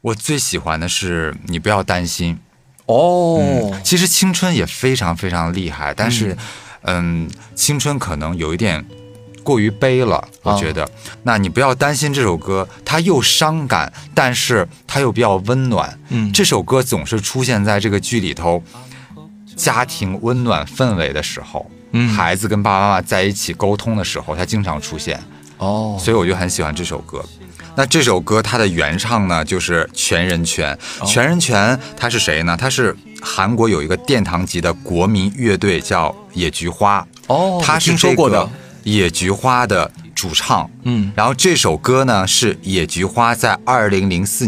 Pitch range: 90-125 Hz